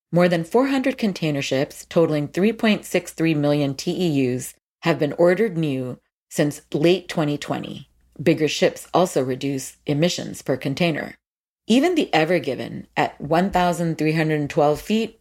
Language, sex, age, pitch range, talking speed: English, female, 40-59, 145-180 Hz, 120 wpm